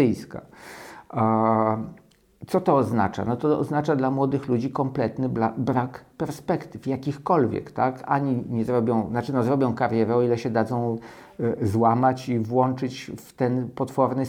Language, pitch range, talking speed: Polish, 115-135 Hz, 130 wpm